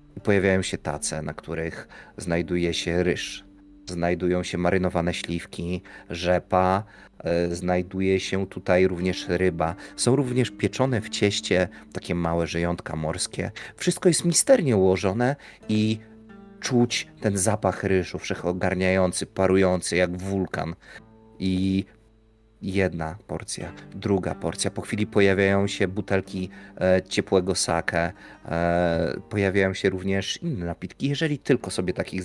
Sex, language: male, Polish